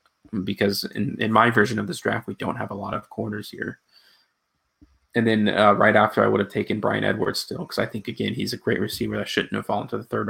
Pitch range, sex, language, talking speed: 105-115 Hz, male, English, 250 wpm